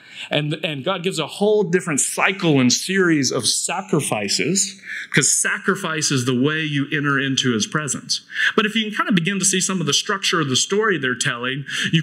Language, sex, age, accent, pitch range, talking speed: English, male, 30-49, American, 140-190 Hz, 205 wpm